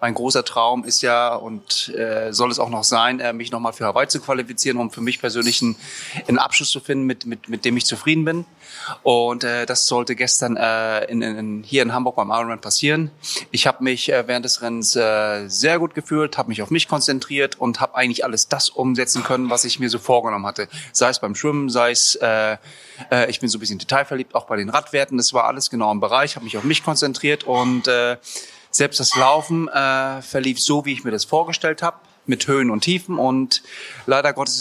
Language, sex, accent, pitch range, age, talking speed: German, male, German, 120-145 Hz, 30-49, 220 wpm